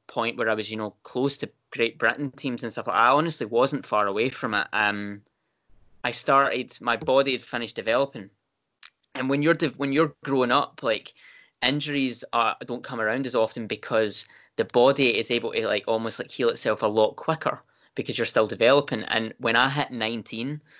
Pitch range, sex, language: 110-125 Hz, male, English